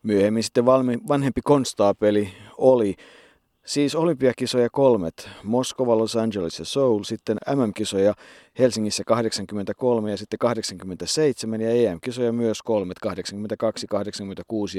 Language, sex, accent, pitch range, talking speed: Finnish, male, native, 95-110 Hz, 100 wpm